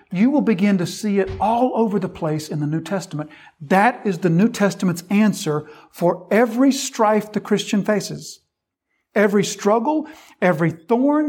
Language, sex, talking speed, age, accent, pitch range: English, male, 160 wpm, 50-69, American, 175-230 Hz